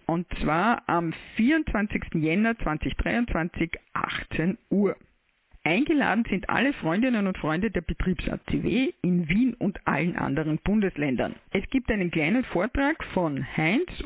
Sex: female